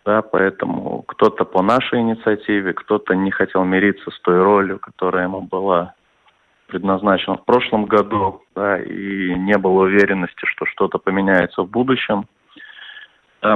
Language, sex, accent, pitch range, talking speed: Russian, male, native, 95-110 Hz, 135 wpm